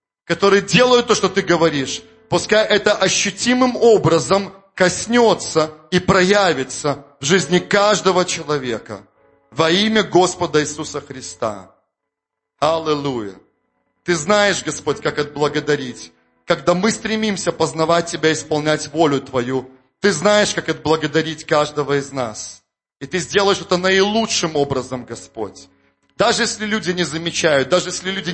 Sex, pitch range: male, 140-180 Hz